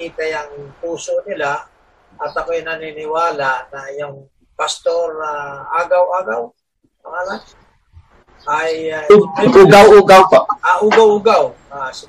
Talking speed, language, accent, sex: 100 wpm, Filipino, native, male